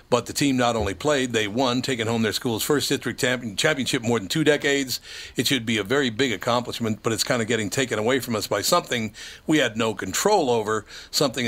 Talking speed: 225 wpm